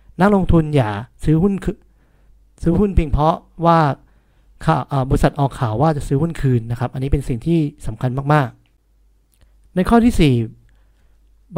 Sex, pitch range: male, 125-165 Hz